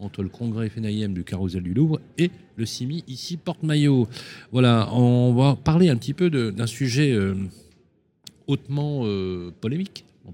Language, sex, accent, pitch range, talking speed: French, male, French, 95-130 Hz, 170 wpm